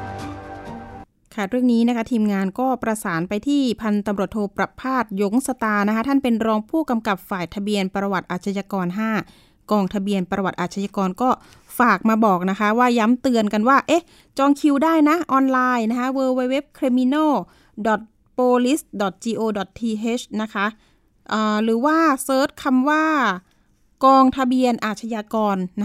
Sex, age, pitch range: female, 20-39, 210-255 Hz